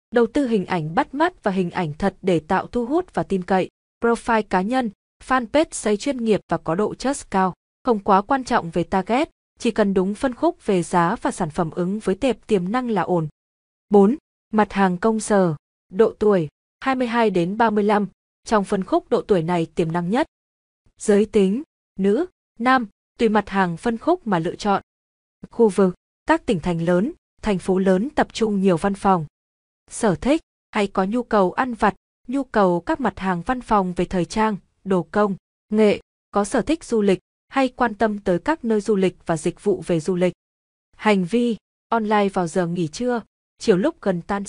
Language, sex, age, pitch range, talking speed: Vietnamese, female, 20-39, 185-235 Hz, 195 wpm